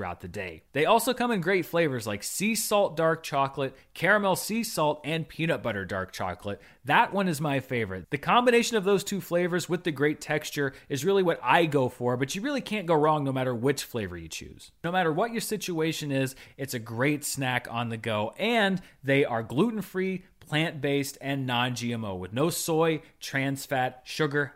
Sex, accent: male, American